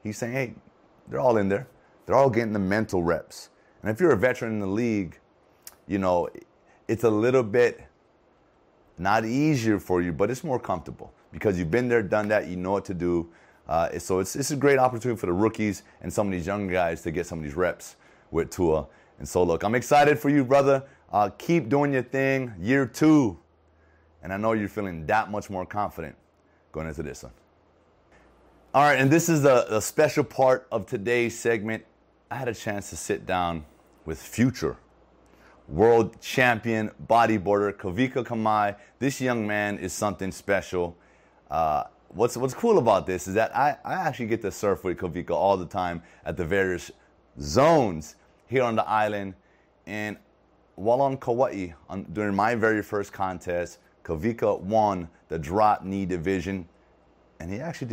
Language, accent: English, American